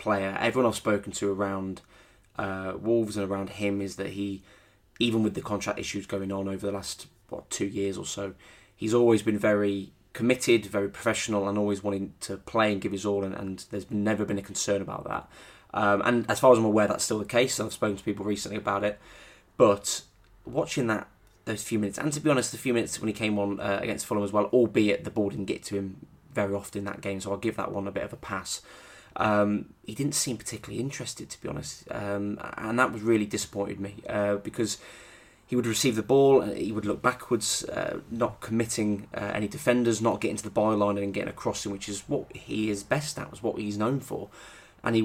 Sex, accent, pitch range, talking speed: male, British, 100-115 Hz, 230 wpm